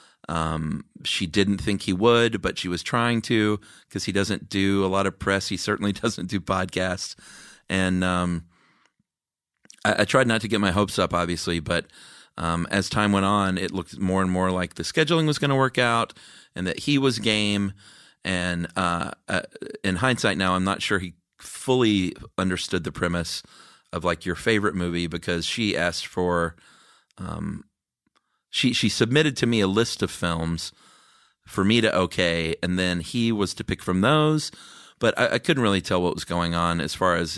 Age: 30-49